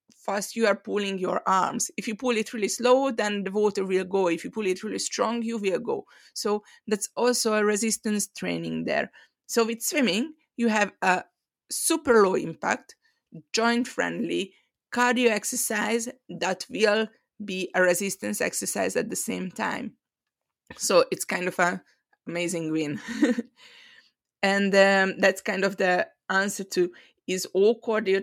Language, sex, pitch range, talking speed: English, female, 195-245 Hz, 155 wpm